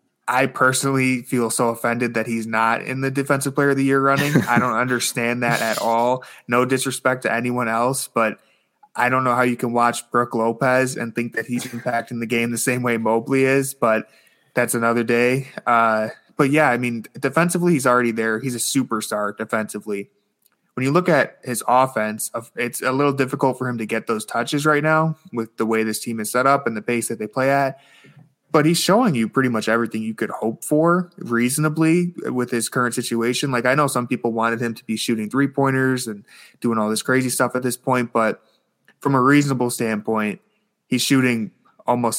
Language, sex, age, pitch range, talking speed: English, male, 20-39, 115-135 Hz, 205 wpm